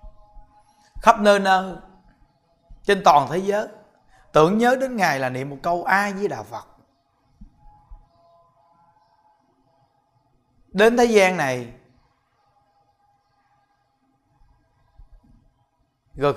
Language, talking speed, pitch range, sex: Vietnamese, 90 wpm, 135-205 Hz, male